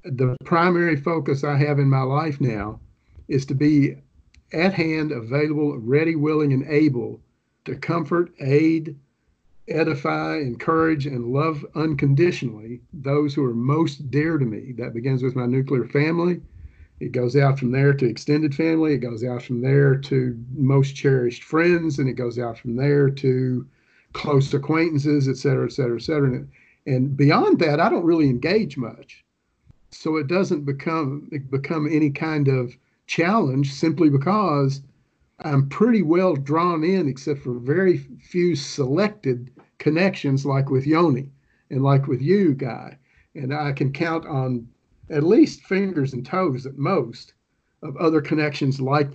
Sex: male